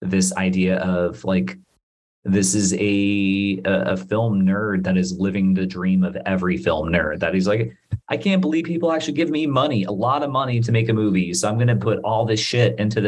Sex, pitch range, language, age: male, 90-110 Hz, English, 30-49